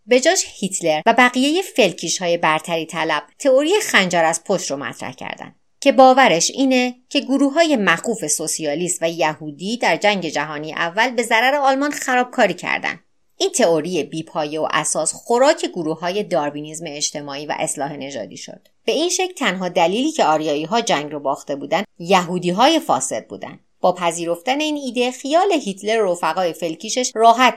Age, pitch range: 30-49, 160-245 Hz